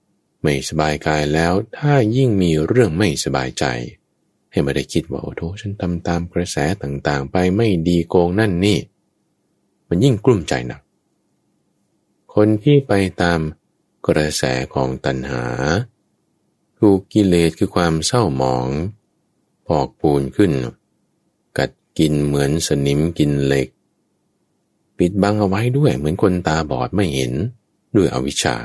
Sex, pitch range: male, 70-105 Hz